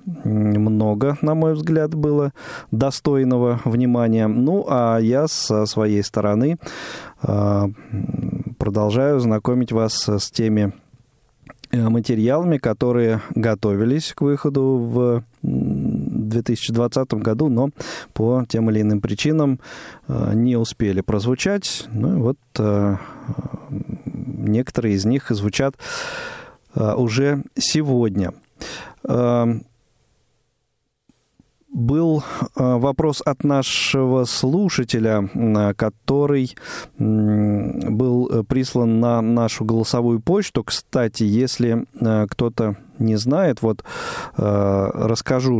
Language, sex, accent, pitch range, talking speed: Russian, male, native, 110-130 Hz, 80 wpm